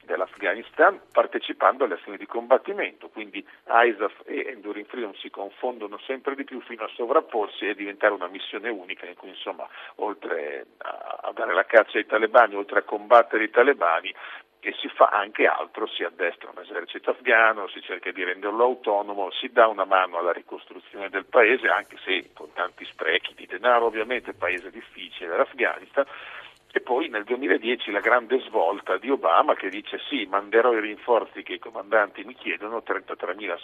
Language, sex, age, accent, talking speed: Italian, male, 50-69, native, 170 wpm